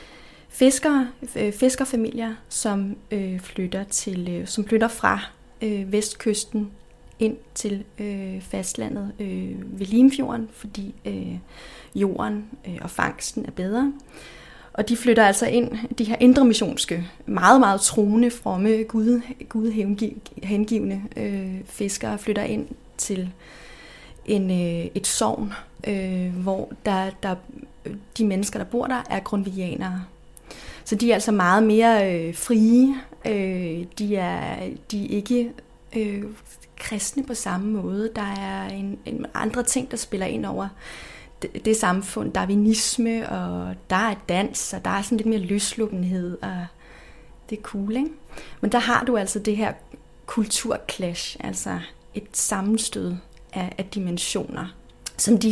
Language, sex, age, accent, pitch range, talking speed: Danish, female, 30-49, native, 190-230 Hz, 120 wpm